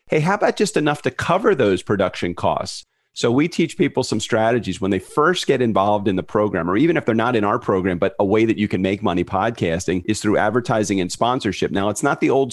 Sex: male